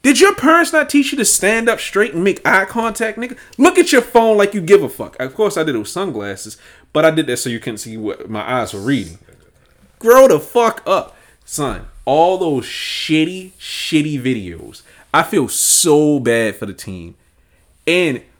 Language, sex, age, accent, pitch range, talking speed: English, male, 30-49, American, 110-185 Hz, 200 wpm